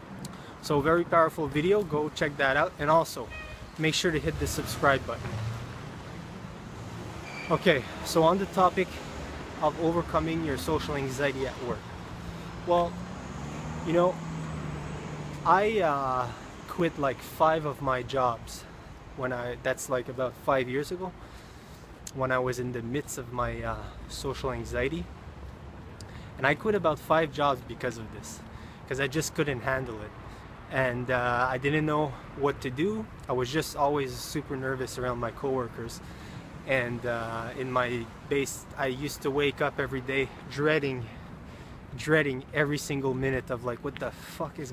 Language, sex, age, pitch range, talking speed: English, male, 20-39, 125-155 Hz, 155 wpm